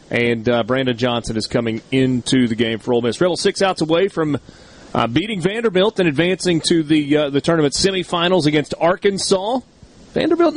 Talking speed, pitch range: 175 wpm, 145-190 Hz